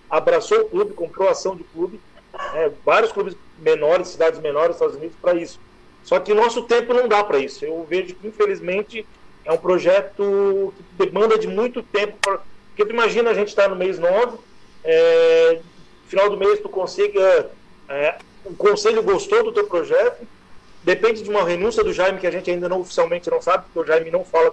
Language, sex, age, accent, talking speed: Portuguese, male, 40-59, Brazilian, 200 wpm